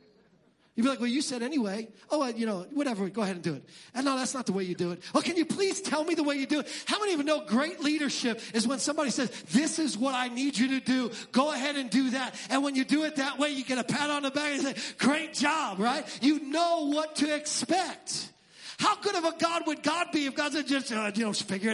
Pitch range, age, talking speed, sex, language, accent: 175-290 Hz, 40-59, 280 wpm, male, English, American